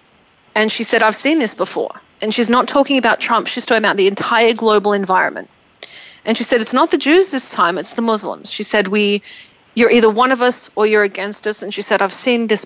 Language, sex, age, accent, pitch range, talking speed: English, female, 30-49, Australian, 205-240 Hz, 235 wpm